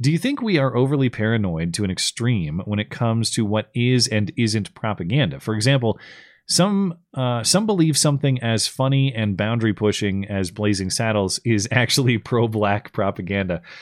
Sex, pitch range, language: male, 100-125 Hz, English